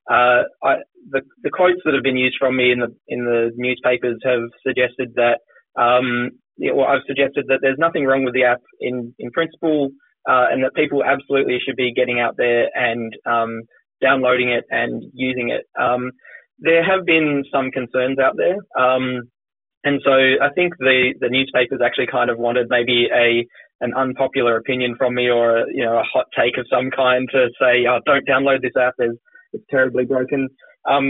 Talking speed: 195 wpm